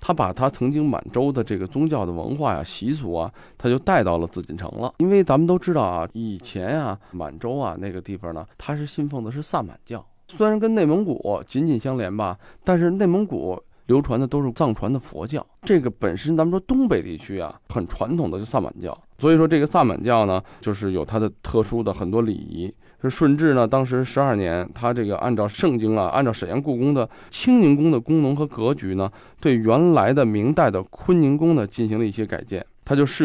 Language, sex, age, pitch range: Chinese, male, 20-39, 100-145 Hz